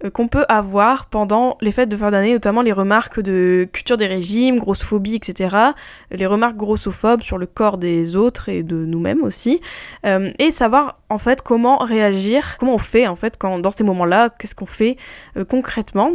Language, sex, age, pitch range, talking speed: French, female, 20-39, 195-240 Hz, 190 wpm